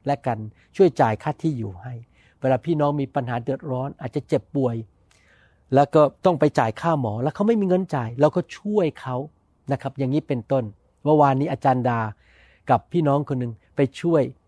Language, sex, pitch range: Thai, male, 125-180 Hz